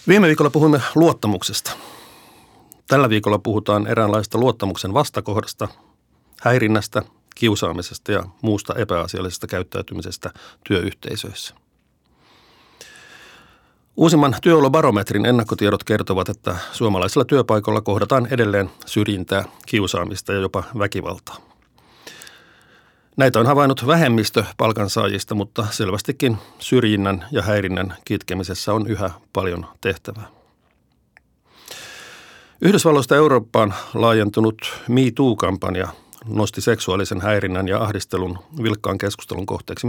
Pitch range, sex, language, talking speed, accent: 100-120 Hz, male, Finnish, 90 wpm, native